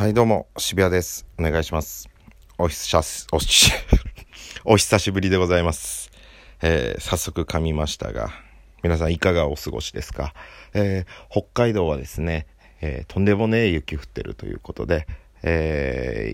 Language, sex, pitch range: Japanese, male, 80-95 Hz